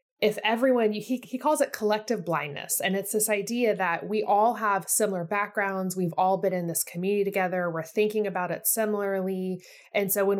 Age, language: 20-39, English